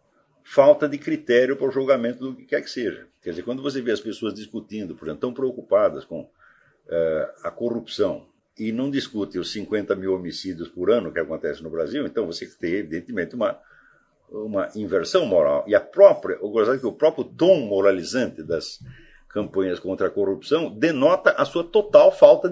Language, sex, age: Portuguese, male, 60-79